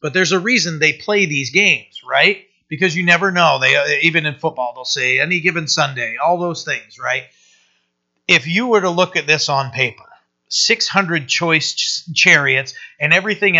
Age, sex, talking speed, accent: 40-59, male, 180 wpm, American